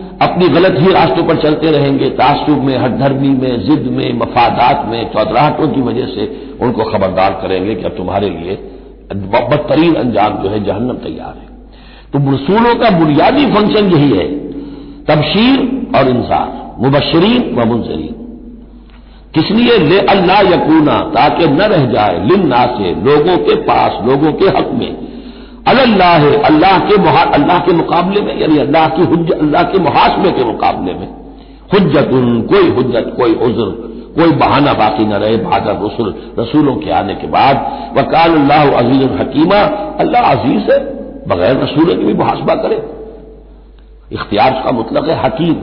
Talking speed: 150 wpm